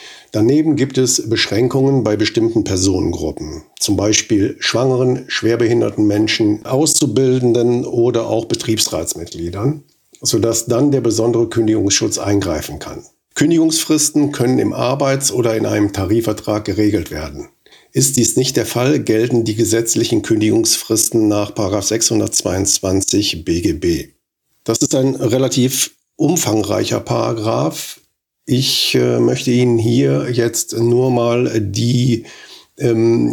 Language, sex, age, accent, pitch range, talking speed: German, male, 50-69, German, 110-130 Hz, 110 wpm